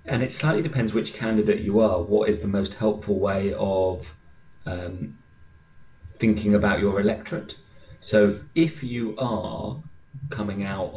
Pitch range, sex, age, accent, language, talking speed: 85-105 Hz, male, 30-49, British, English, 140 wpm